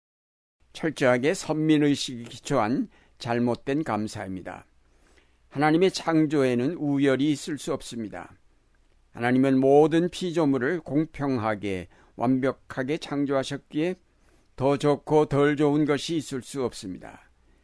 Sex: male